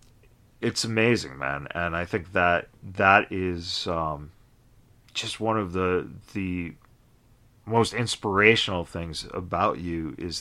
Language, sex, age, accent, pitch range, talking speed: English, male, 40-59, American, 90-115 Hz, 120 wpm